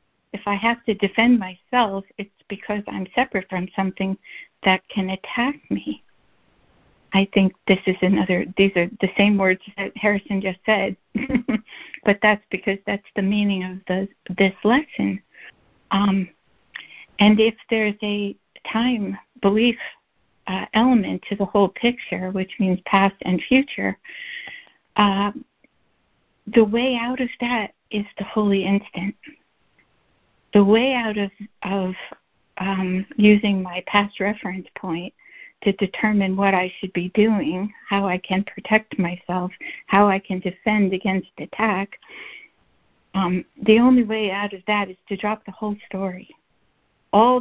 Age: 60-79